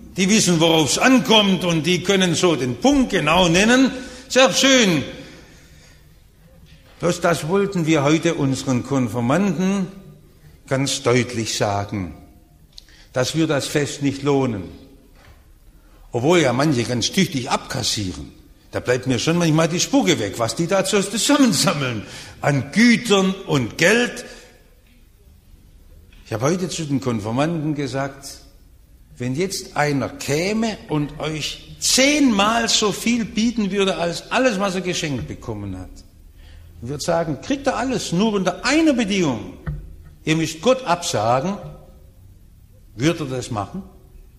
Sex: male